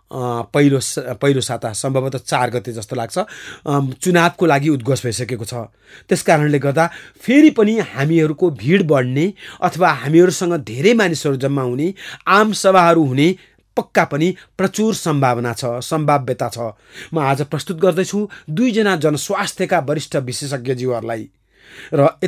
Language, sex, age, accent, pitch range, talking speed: English, male, 30-49, Indian, 125-175 Hz, 135 wpm